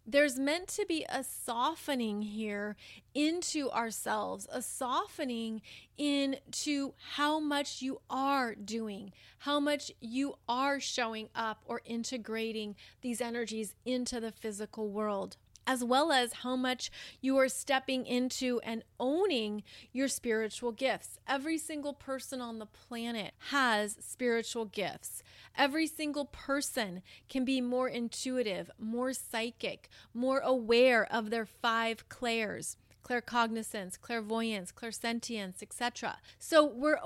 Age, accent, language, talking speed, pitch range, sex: 30-49, American, English, 120 wpm, 220-275 Hz, female